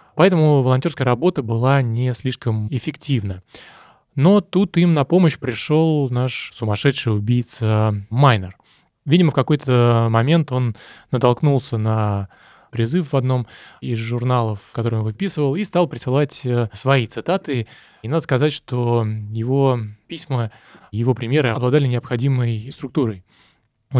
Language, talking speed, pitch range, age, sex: Russian, 125 wpm, 115-140 Hz, 20-39, male